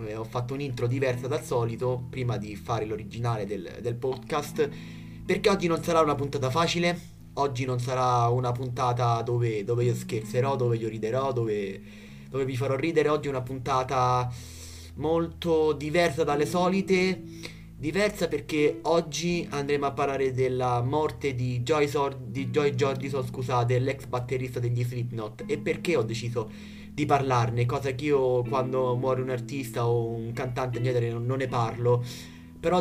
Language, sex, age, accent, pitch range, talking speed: Italian, male, 20-39, native, 115-140 Hz, 150 wpm